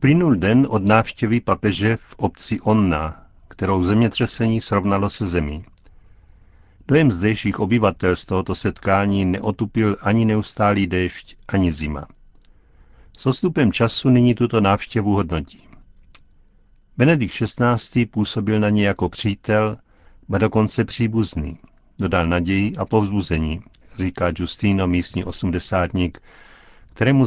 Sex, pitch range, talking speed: male, 90-115 Hz, 110 wpm